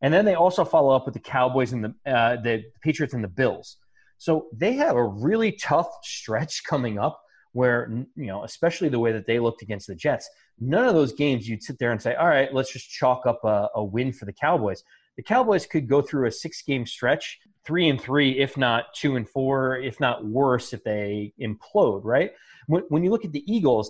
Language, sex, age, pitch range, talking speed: English, male, 30-49, 120-150 Hz, 225 wpm